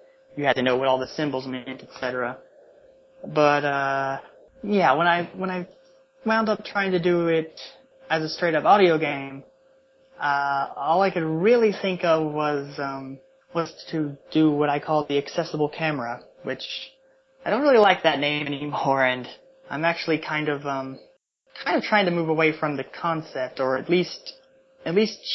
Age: 30-49